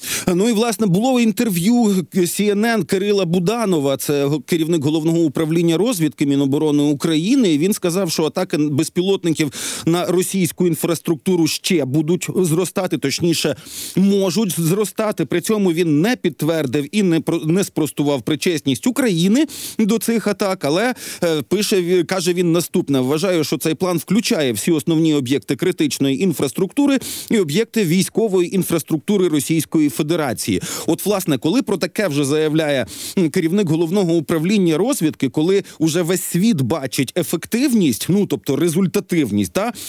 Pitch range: 150-190 Hz